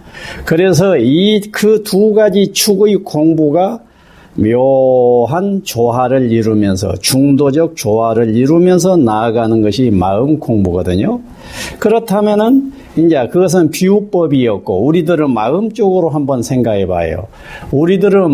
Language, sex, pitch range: Korean, male, 145-205 Hz